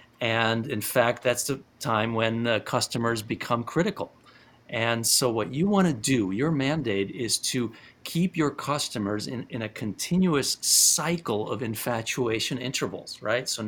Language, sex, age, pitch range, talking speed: English, male, 50-69, 110-130 Hz, 155 wpm